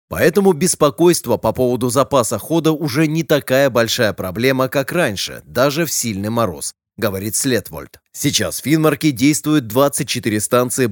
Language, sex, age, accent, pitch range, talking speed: Russian, male, 20-39, native, 115-155 Hz, 135 wpm